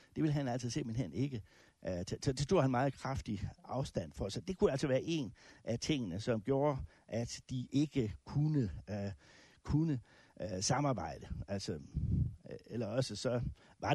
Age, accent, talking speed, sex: 60-79, native, 150 wpm, male